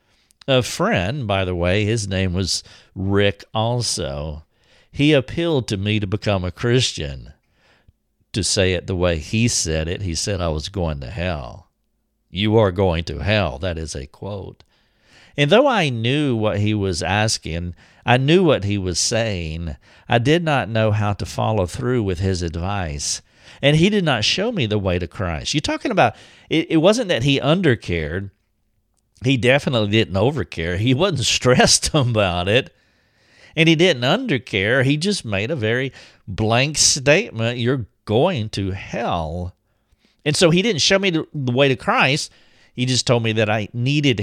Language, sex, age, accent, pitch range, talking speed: English, male, 50-69, American, 95-135 Hz, 170 wpm